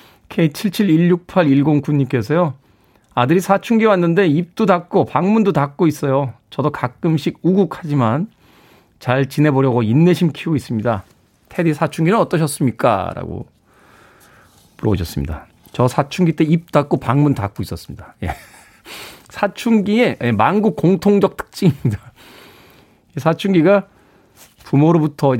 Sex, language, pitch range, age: male, Korean, 120-170 Hz, 40-59